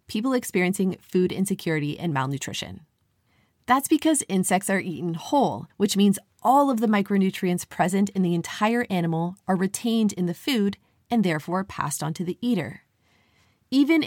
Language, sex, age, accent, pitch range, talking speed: English, female, 30-49, American, 165-230 Hz, 155 wpm